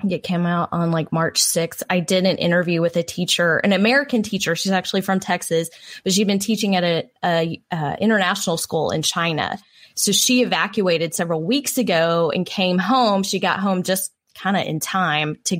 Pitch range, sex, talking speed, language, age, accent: 175-200 Hz, female, 195 wpm, English, 20-39, American